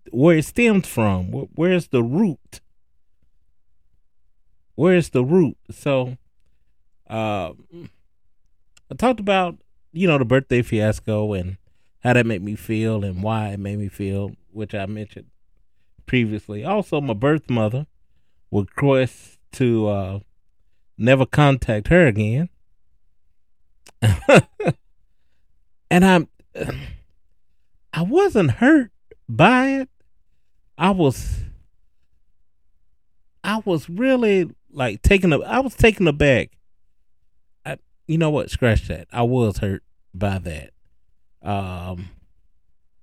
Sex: male